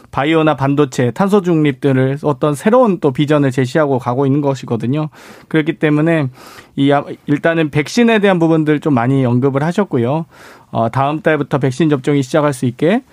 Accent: native